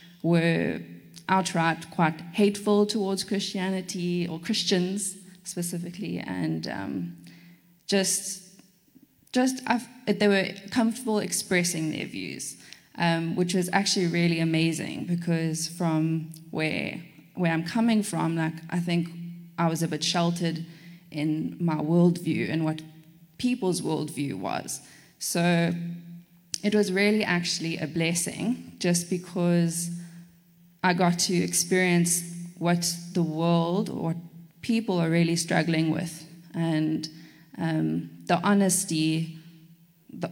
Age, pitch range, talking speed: 20-39, 165-185 Hz, 115 wpm